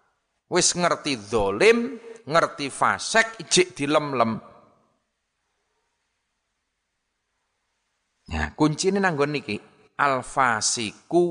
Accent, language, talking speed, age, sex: native, Indonesian, 75 wpm, 30-49, male